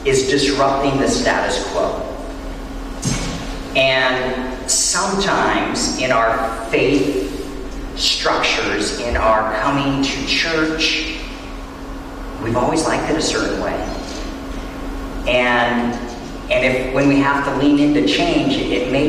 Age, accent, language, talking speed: 40-59, American, English, 115 wpm